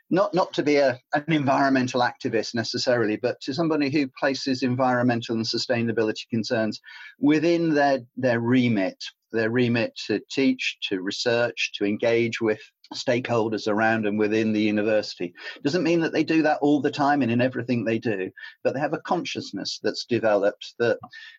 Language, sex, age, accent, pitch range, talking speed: English, male, 40-59, British, 110-135 Hz, 165 wpm